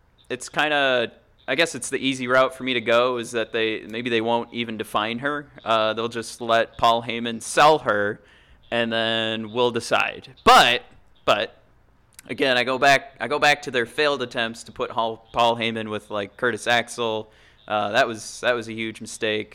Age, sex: 20-39, male